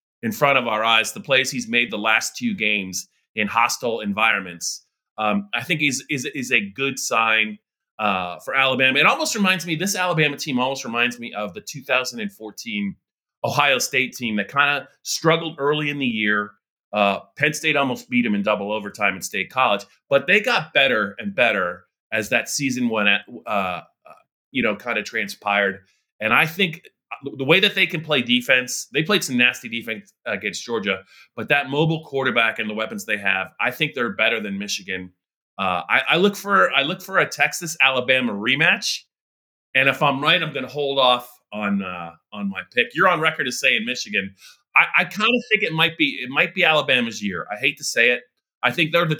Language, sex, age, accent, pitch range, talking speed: English, male, 30-49, American, 105-160 Hz, 200 wpm